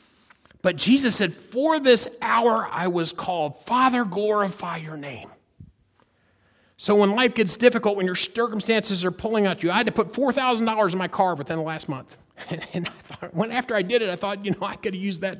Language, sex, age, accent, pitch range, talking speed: English, male, 40-59, American, 175-230 Hz, 205 wpm